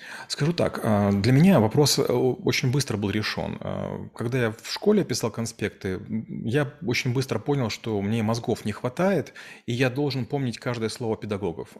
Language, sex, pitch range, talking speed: Russian, male, 105-130 Hz, 160 wpm